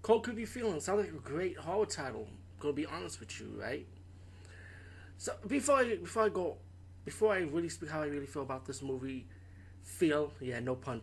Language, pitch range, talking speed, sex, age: English, 90-135 Hz, 210 wpm, male, 20-39